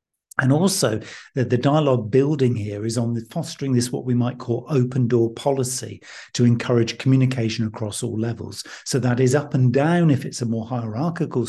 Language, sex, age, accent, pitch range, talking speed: English, male, 50-69, British, 110-130 Hz, 185 wpm